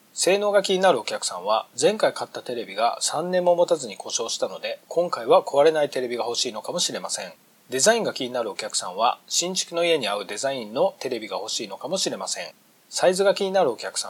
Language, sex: Japanese, male